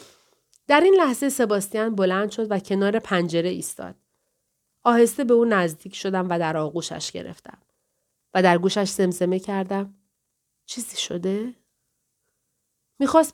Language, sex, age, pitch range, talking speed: Persian, female, 40-59, 195-260 Hz, 120 wpm